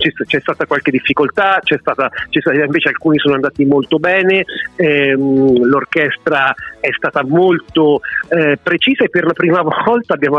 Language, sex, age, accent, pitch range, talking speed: Italian, male, 40-59, native, 140-175 Hz, 135 wpm